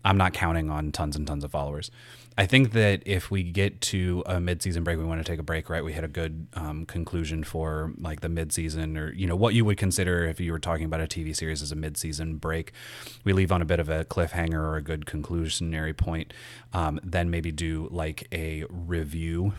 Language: English